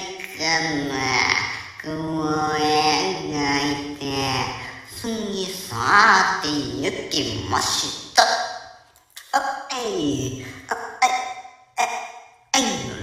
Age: 60-79